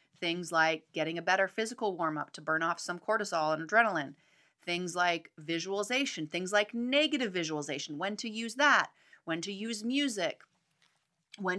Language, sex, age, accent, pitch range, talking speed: English, female, 30-49, American, 160-220 Hz, 160 wpm